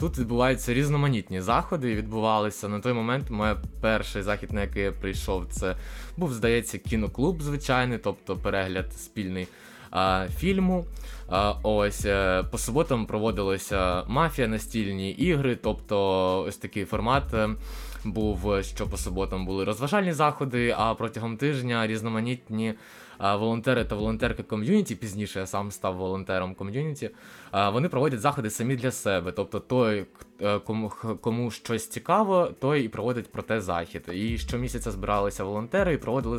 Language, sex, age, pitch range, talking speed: Ukrainian, male, 20-39, 100-125 Hz, 135 wpm